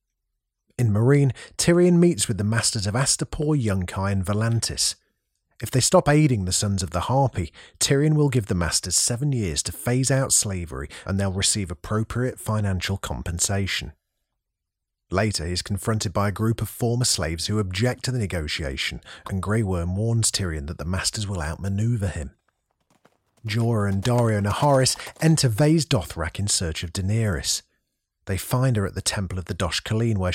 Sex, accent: male, British